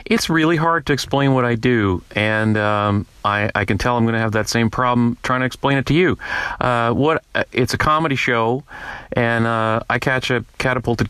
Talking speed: 210 wpm